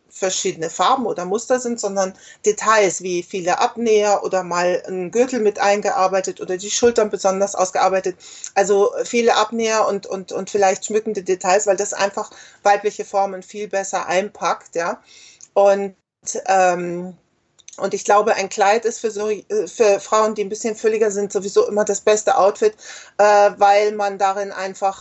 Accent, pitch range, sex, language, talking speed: German, 190-220 Hz, female, German, 160 wpm